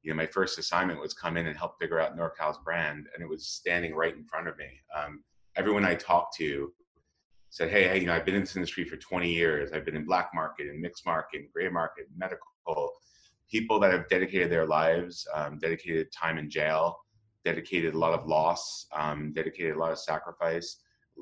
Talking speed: 215 wpm